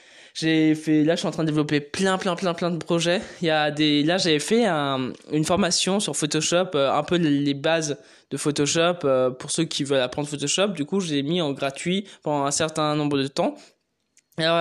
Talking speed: 225 wpm